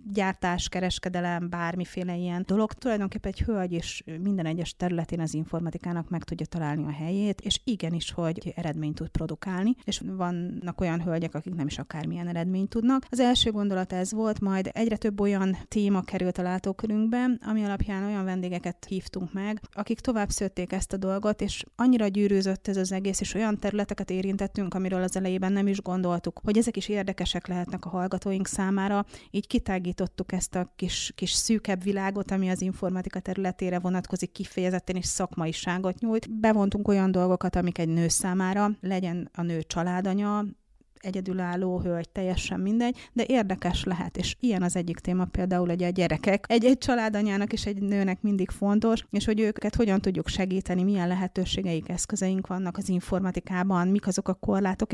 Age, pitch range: 30-49, 175-205 Hz